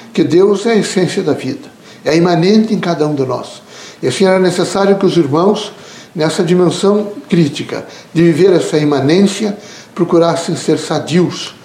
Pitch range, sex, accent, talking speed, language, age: 150-195 Hz, male, Brazilian, 160 wpm, Portuguese, 60-79